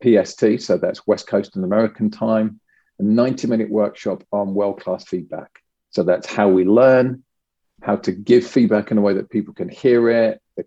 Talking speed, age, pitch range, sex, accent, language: 180 wpm, 40-59, 100-115 Hz, male, British, English